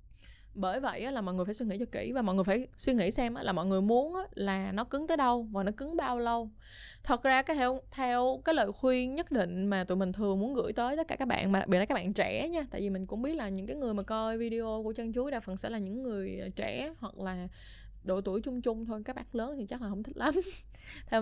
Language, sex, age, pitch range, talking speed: Vietnamese, female, 20-39, 195-250 Hz, 275 wpm